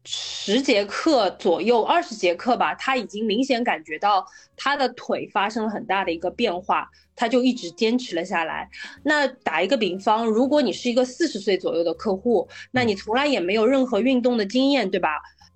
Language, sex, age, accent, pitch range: Chinese, female, 20-39, native, 205-275 Hz